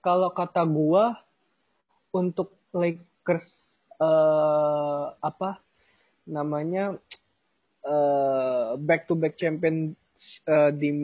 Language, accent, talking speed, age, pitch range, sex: Indonesian, native, 90 wpm, 20-39, 145-180 Hz, male